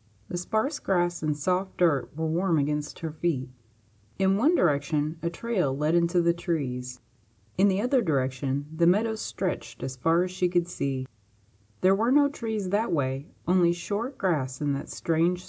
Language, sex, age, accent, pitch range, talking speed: English, female, 30-49, American, 130-180 Hz, 175 wpm